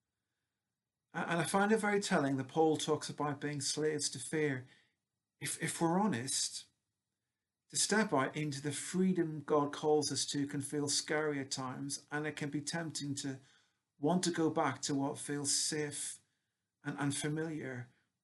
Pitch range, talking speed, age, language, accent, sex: 140-160 Hz, 160 wpm, 40-59, English, British, male